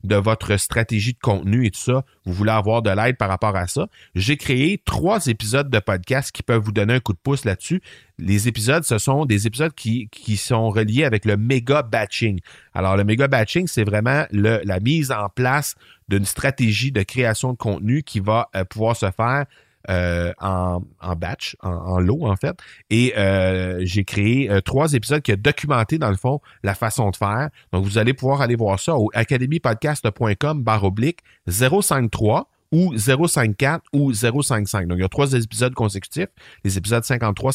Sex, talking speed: male, 185 wpm